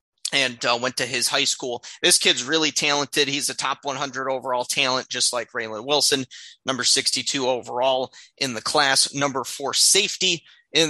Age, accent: 30-49, American